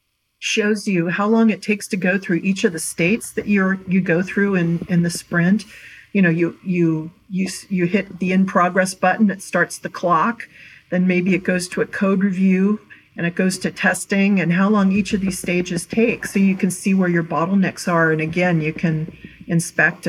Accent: American